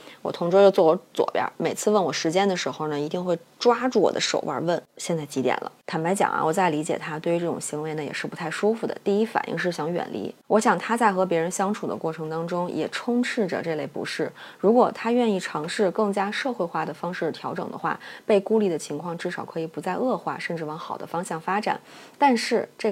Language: Chinese